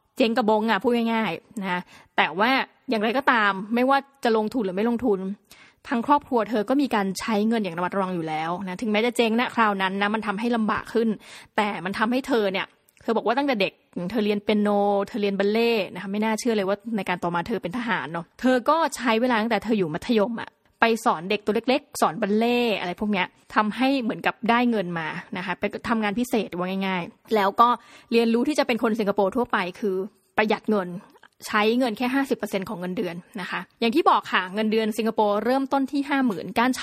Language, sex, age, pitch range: Thai, female, 20-39, 200-245 Hz